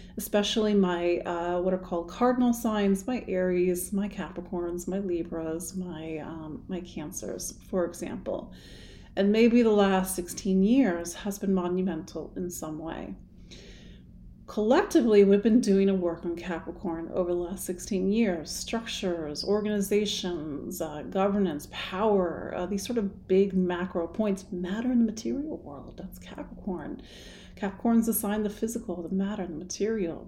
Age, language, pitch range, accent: 30-49, English, 175-210 Hz, American